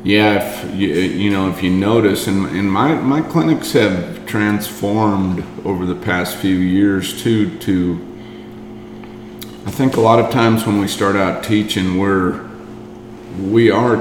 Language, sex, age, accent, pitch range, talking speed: English, male, 50-69, American, 90-105 Hz, 155 wpm